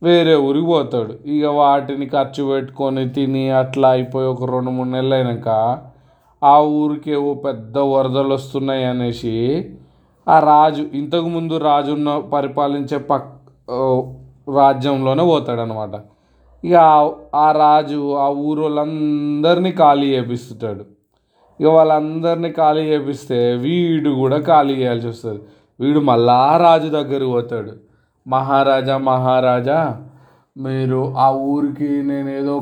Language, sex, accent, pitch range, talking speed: Telugu, male, native, 125-145 Hz, 105 wpm